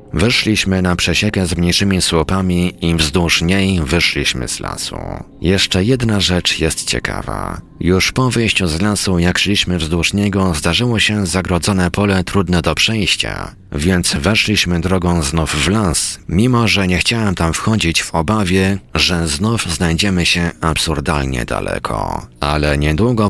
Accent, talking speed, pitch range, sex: native, 140 wpm, 85-100 Hz, male